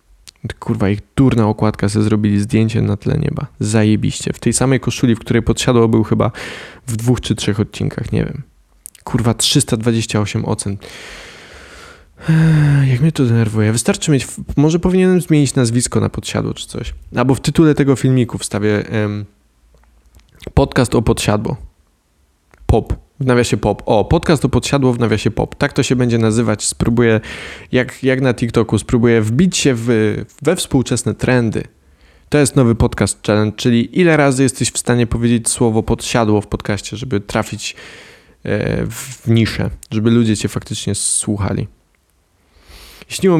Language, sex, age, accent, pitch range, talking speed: Polish, male, 20-39, native, 105-130 Hz, 150 wpm